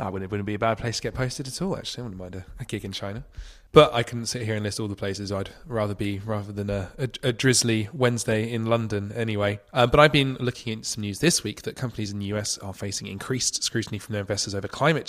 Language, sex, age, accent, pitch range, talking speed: English, male, 20-39, British, 100-125 Hz, 270 wpm